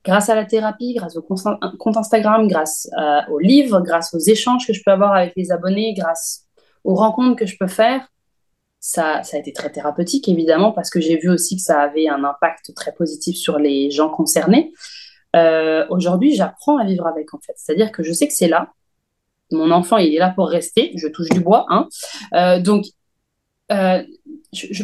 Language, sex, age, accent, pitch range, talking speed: French, female, 30-49, French, 170-225 Hz, 200 wpm